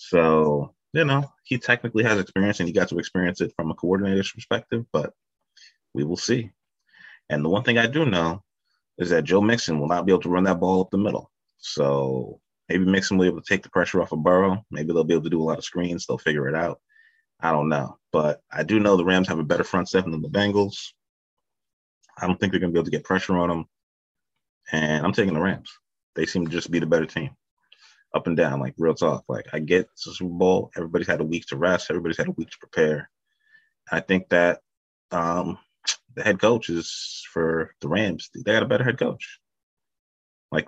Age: 30-49